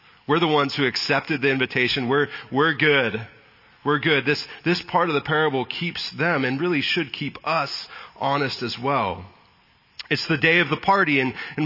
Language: English